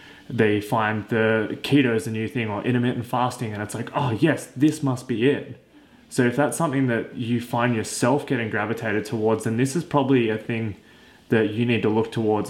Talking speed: 205 wpm